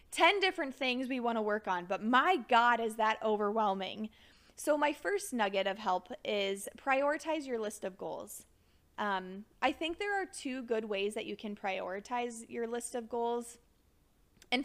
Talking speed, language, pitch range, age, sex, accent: 175 wpm, English, 195-260 Hz, 20-39, female, American